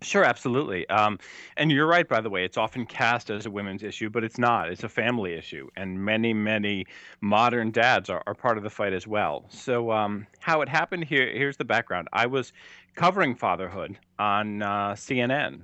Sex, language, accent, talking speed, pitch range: male, English, American, 200 wpm, 105-130 Hz